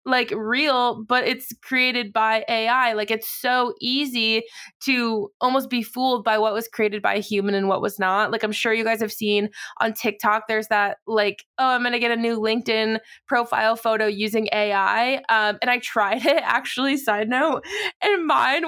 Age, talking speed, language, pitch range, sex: 20-39, 195 wpm, English, 215-250 Hz, female